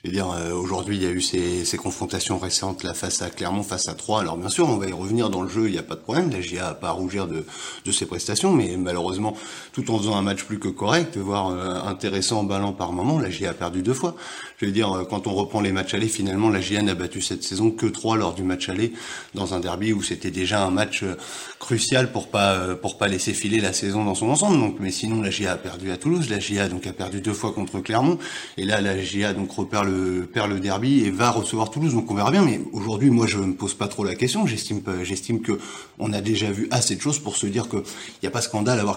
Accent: French